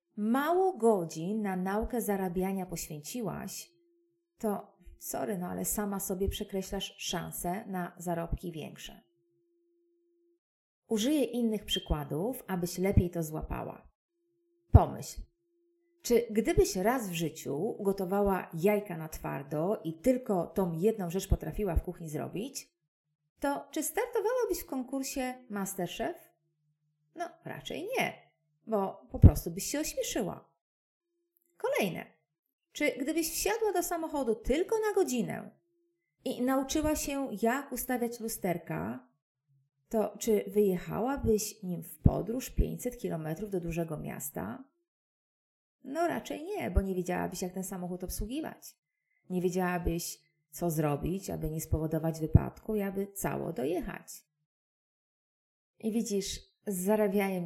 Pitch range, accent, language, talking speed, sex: 175-280 Hz, native, Polish, 115 wpm, female